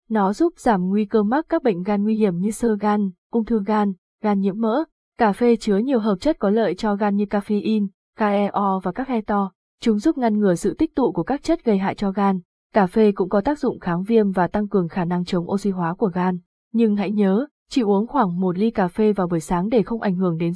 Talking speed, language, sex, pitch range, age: 255 wpm, Vietnamese, female, 190-230 Hz, 20-39